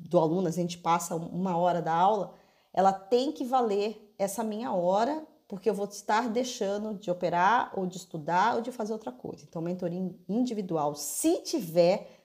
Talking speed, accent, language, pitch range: 175 wpm, Brazilian, Portuguese, 180-225 Hz